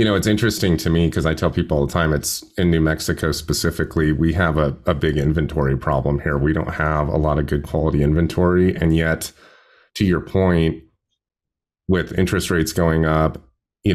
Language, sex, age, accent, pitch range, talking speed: English, male, 30-49, American, 75-85 Hz, 200 wpm